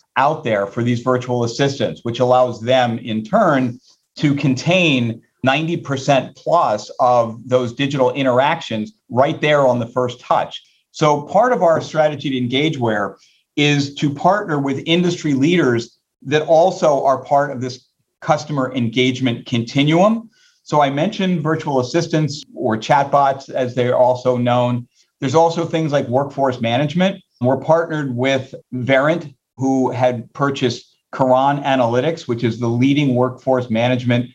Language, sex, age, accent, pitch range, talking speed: English, male, 50-69, American, 125-150 Hz, 140 wpm